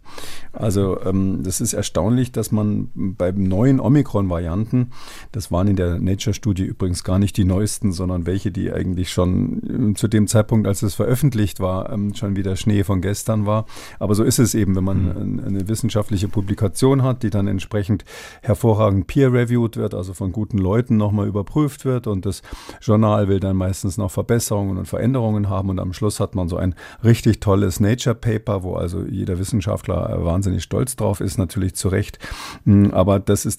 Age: 50-69